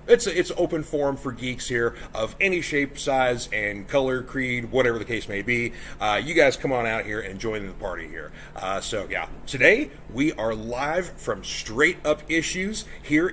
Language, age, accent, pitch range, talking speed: English, 40-59, American, 115-165 Hz, 200 wpm